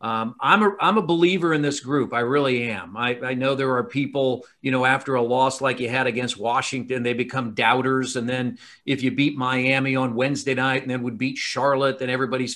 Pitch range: 125-155 Hz